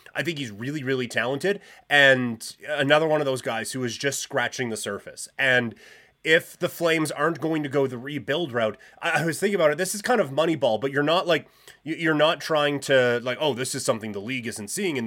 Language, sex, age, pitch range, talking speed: English, male, 30-49, 120-150 Hz, 235 wpm